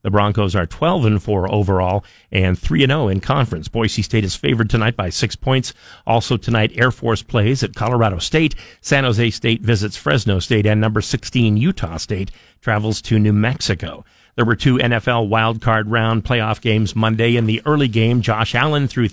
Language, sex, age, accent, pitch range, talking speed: English, male, 50-69, American, 105-125 Hz, 190 wpm